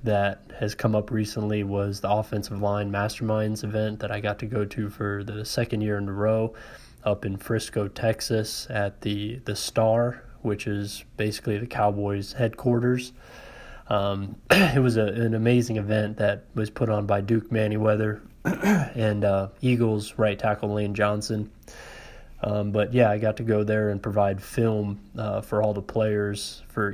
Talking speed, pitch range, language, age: 170 wpm, 105-115 Hz, English, 20-39